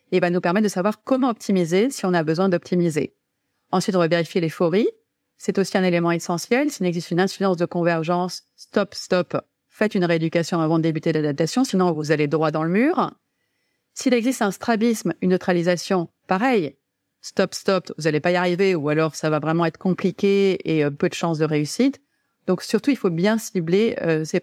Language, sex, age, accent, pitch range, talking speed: French, female, 30-49, French, 170-215 Hz, 200 wpm